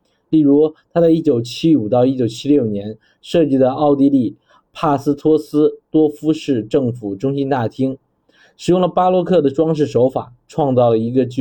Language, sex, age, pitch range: Chinese, male, 20-39, 120-150 Hz